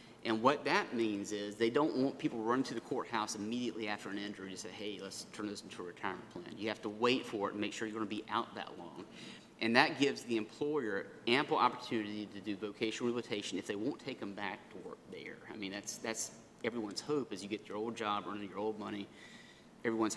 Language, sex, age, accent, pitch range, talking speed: English, male, 30-49, American, 105-125 Hz, 240 wpm